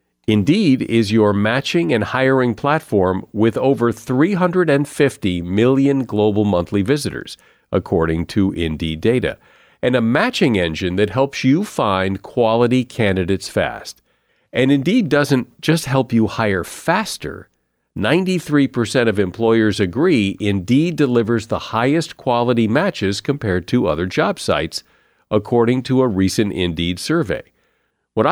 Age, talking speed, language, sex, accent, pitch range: 50-69, 125 wpm, English, male, American, 100-135 Hz